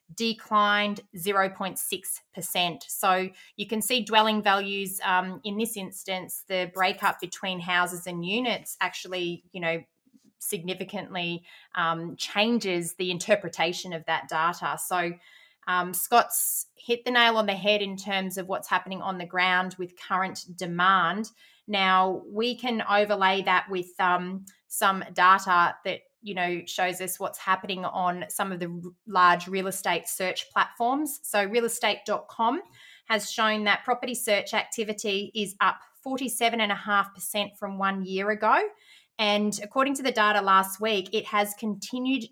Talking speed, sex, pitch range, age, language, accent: 140 wpm, female, 180-220 Hz, 20-39, English, Australian